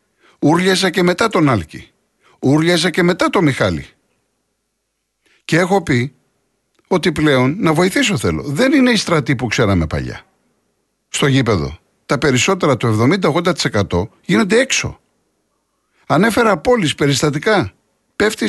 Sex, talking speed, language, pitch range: male, 120 wpm, Greek, 115-195 Hz